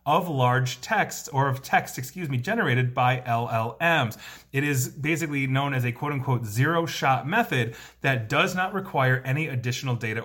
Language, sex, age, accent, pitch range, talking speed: English, male, 30-49, American, 120-150 Hz, 170 wpm